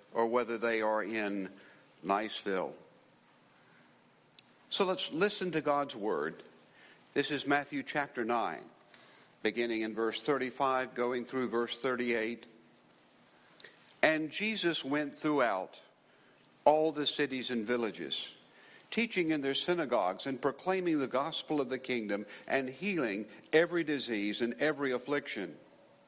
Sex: male